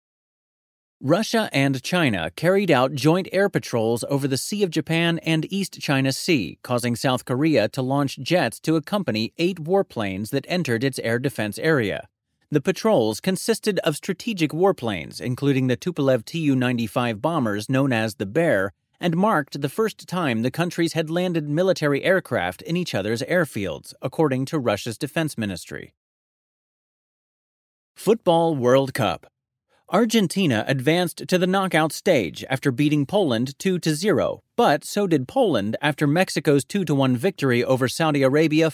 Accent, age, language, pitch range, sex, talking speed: American, 30-49, English, 130-175 Hz, male, 145 wpm